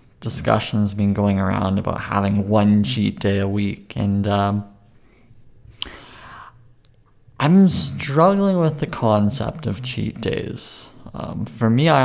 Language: English